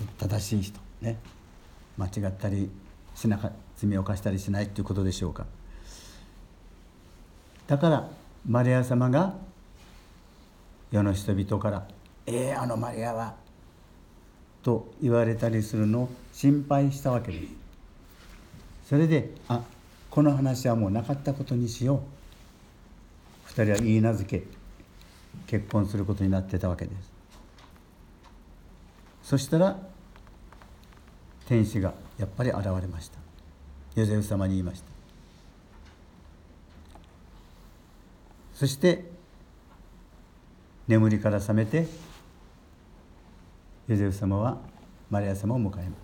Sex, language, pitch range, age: male, Japanese, 90-115 Hz, 60-79